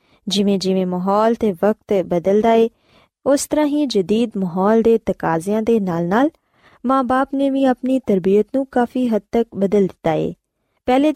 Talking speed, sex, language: 150 wpm, female, Punjabi